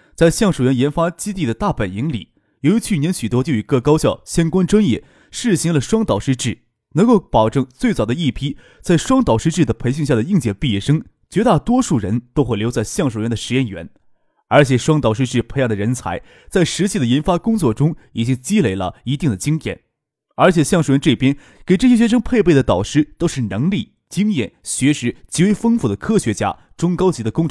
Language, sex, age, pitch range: Chinese, male, 20-39, 115-175 Hz